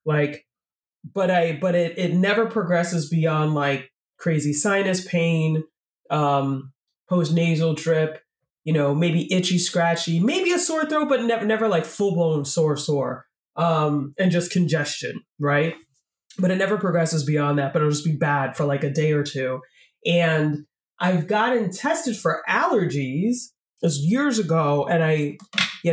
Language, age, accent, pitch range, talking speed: English, 20-39, American, 150-185 Hz, 155 wpm